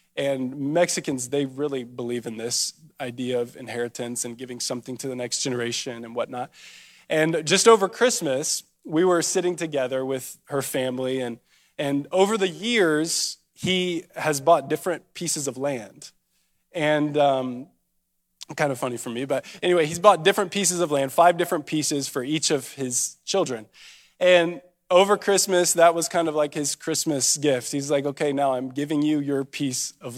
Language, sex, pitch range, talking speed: English, male, 135-180 Hz, 170 wpm